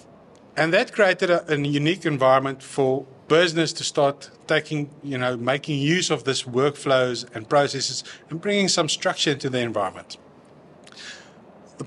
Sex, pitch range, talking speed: male, 135-170 Hz, 145 wpm